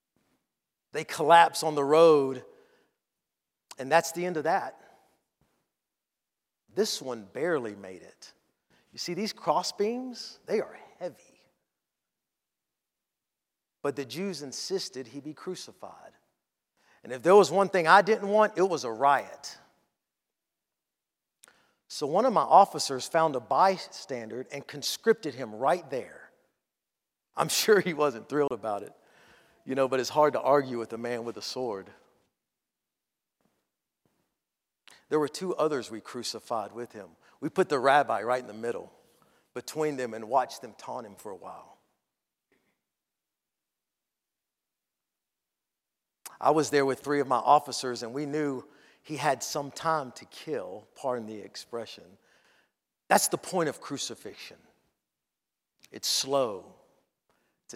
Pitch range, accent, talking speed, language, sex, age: 125-175 Hz, American, 135 wpm, English, male, 50-69